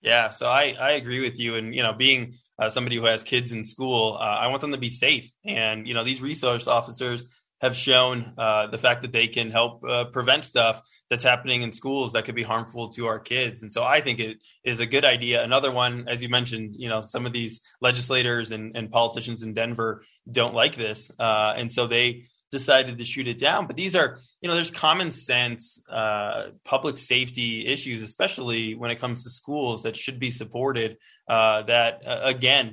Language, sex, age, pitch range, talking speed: English, male, 20-39, 115-130 Hz, 215 wpm